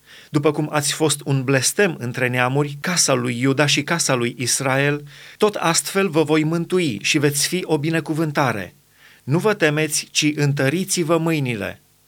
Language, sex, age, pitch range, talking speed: Romanian, male, 30-49, 140-170 Hz, 155 wpm